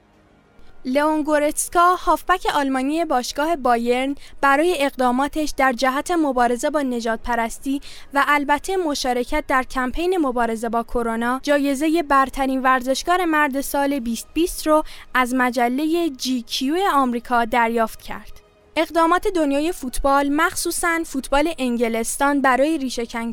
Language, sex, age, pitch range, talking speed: Persian, female, 10-29, 245-310 Hz, 110 wpm